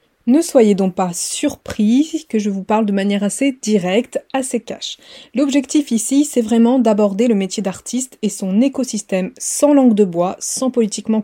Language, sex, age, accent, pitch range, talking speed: French, female, 20-39, French, 200-265 Hz, 170 wpm